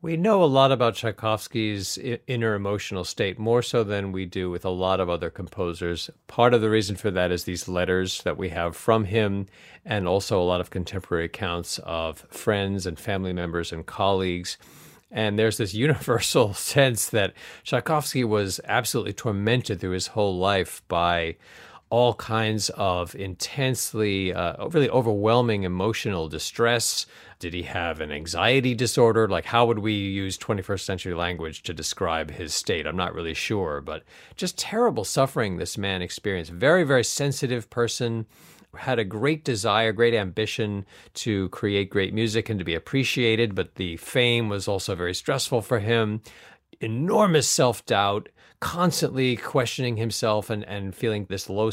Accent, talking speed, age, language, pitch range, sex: American, 160 wpm, 40-59, English, 95-120 Hz, male